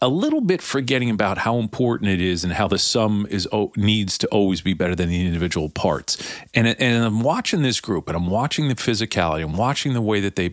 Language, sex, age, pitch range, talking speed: English, male, 40-59, 100-125 Hz, 235 wpm